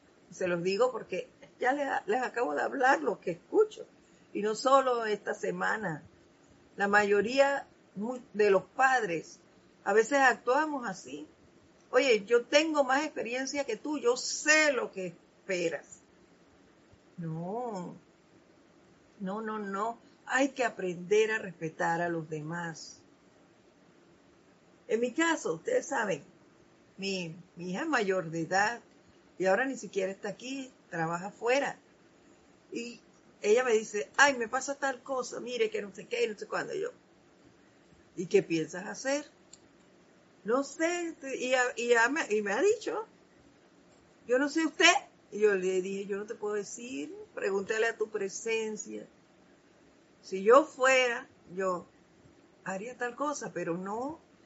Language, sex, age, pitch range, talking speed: Spanish, female, 50-69, 195-285 Hz, 140 wpm